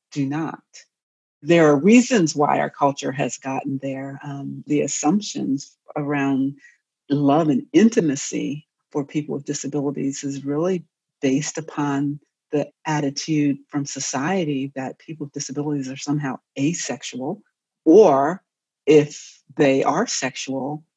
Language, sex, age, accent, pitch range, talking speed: English, female, 50-69, American, 140-165 Hz, 120 wpm